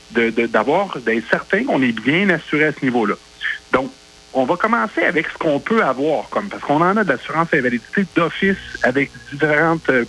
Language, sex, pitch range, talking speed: French, male, 115-190 Hz, 195 wpm